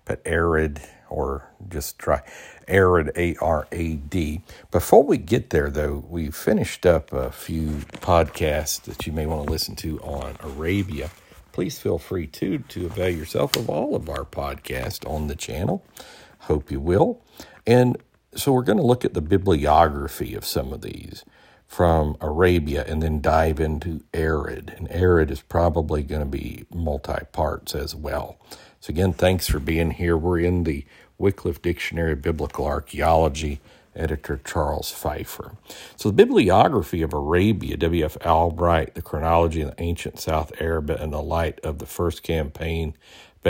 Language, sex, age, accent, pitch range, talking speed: English, male, 60-79, American, 75-85 Hz, 160 wpm